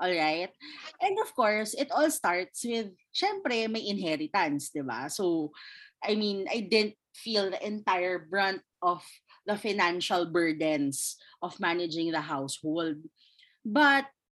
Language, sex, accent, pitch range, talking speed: Filipino, female, native, 175-280 Hz, 135 wpm